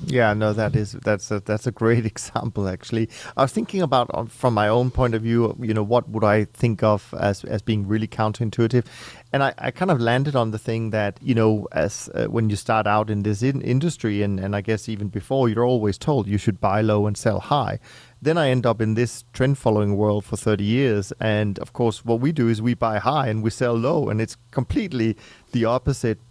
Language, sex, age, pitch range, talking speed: English, male, 30-49, 110-130 Hz, 235 wpm